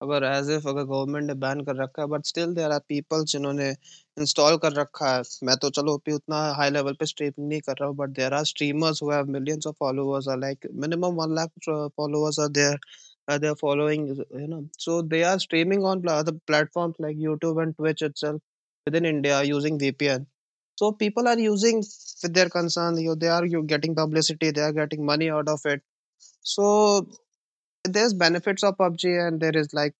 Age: 20-39